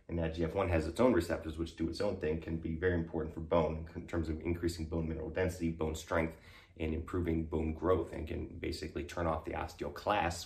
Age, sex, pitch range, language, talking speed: 30-49, male, 80-90 Hz, English, 220 wpm